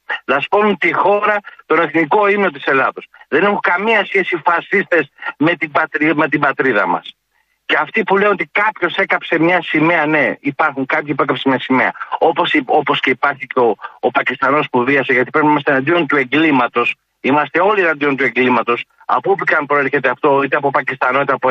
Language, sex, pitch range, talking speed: Greek, male, 145-185 Hz, 185 wpm